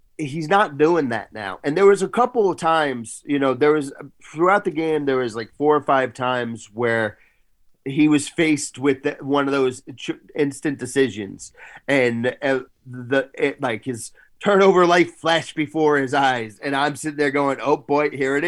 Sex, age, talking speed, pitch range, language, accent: male, 30-49, 180 wpm, 125-150 Hz, English, American